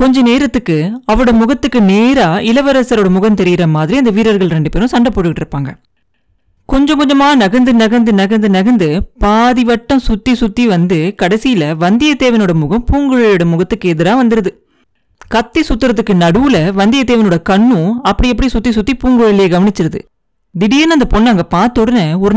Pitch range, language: 185-250 Hz, Tamil